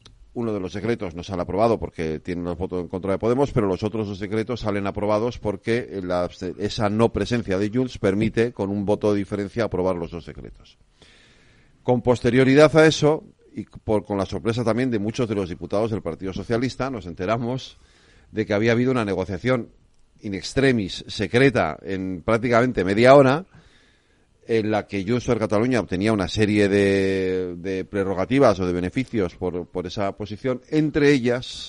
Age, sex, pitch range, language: 40-59, male, 95-115 Hz, Spanish